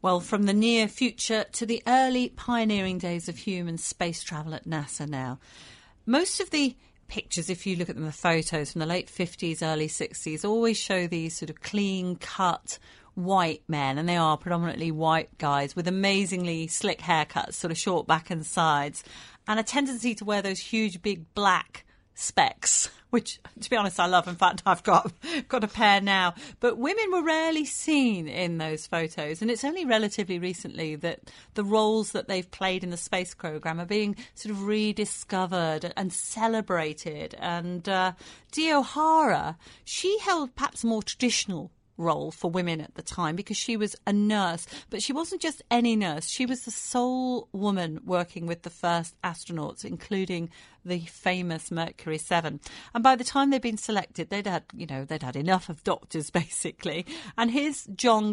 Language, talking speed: English, 180 wpm